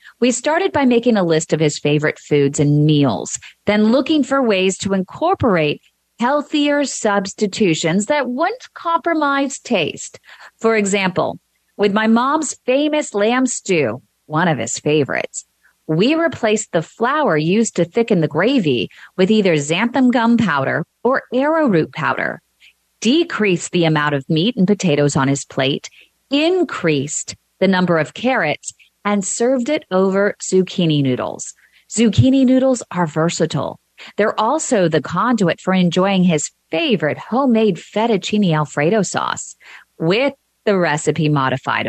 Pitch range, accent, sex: 165-250 Hz, American, female